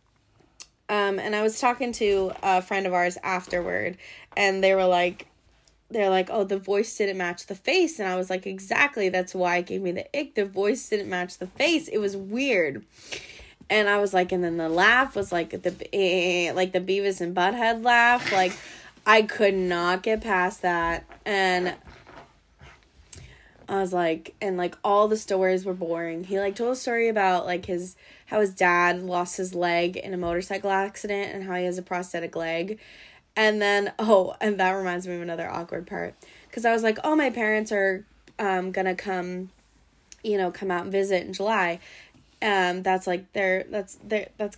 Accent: American